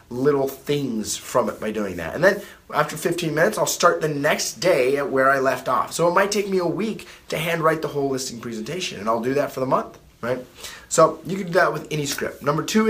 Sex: male